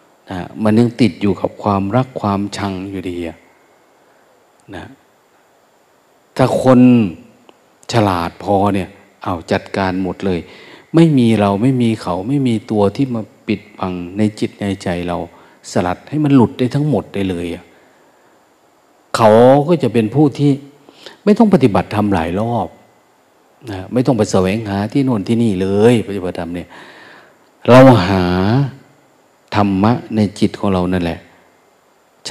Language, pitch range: Thai, 100-135 Hz